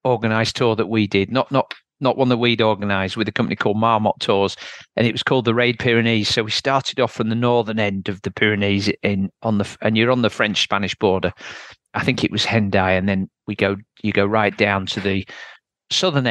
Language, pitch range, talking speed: English, 105-130 Hz, 230 wpm